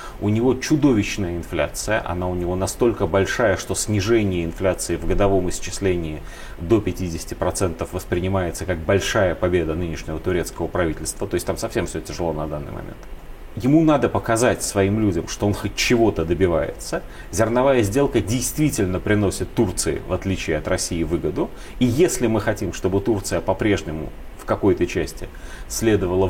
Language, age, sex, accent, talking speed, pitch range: Russian, 30-49, male, native, 145 wpm, 90-120 Hz